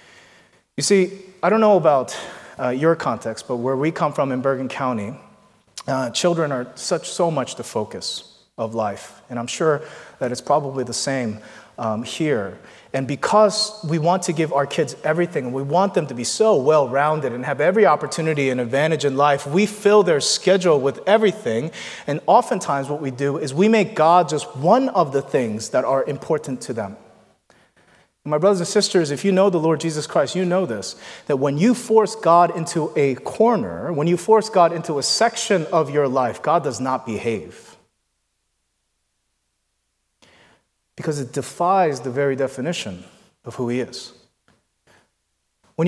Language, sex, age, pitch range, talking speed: English, male, 30-49, 135-195 Hz, 175 wpm